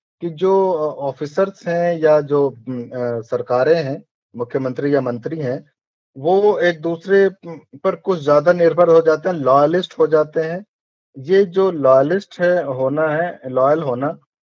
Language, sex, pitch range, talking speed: Hindi, male, 130-165 Hz, 140 wpm